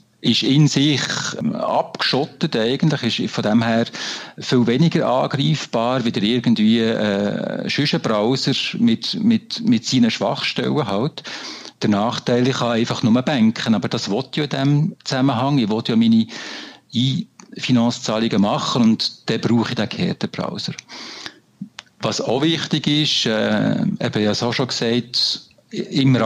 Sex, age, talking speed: male, 50-69, 135 wpm